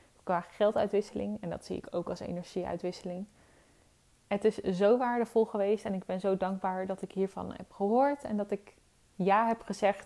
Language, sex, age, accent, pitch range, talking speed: Dutch, female, 20-39, Dutch, 190-230 Hz, 180 wpm